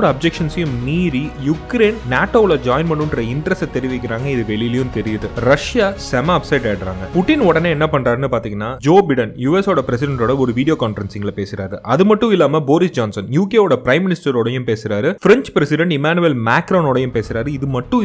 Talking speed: 50 wpm